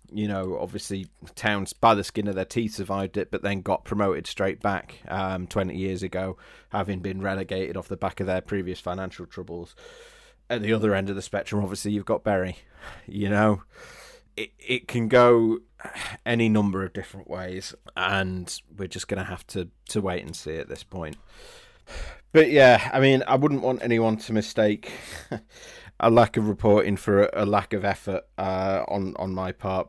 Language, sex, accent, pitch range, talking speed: English, male, British, 95-110 Hz, 185 wpm